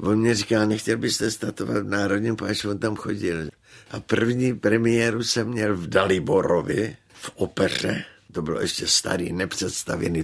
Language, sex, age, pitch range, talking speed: Czech, male, 60-79, 90-110 Hz, 150 wpm